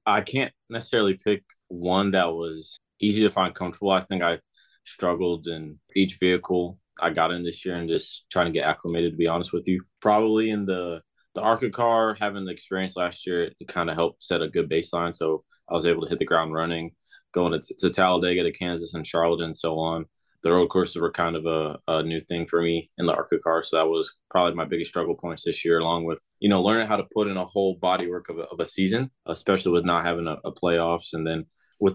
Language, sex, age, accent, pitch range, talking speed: English, male, 20-39, American, 80-95 Hz, 235 wpm